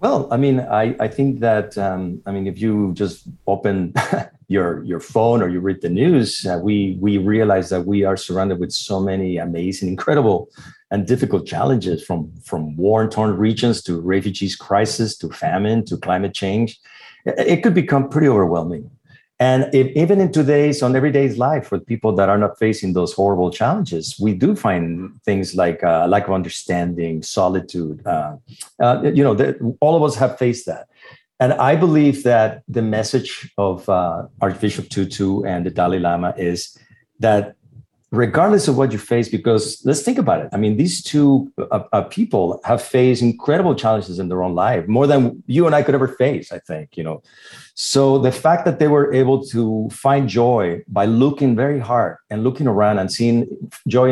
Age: 40-59